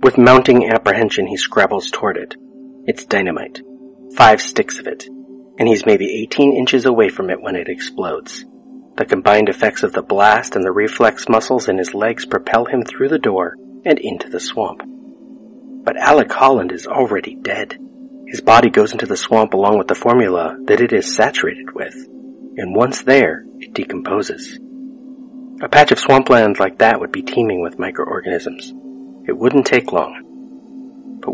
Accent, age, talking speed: American, 40-59, 170 wpm